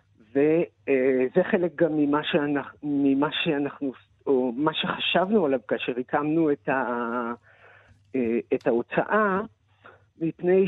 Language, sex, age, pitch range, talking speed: Hebrew, male, 50-69, 125-170 Hz, 90 wpm